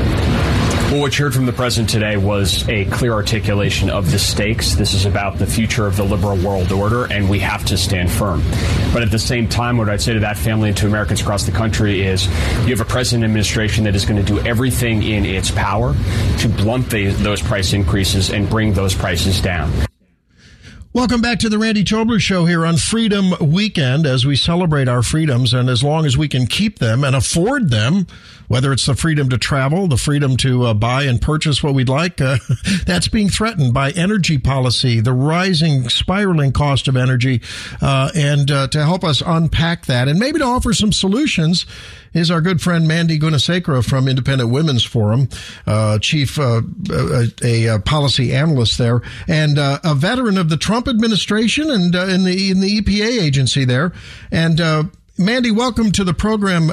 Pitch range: 110-165 Hz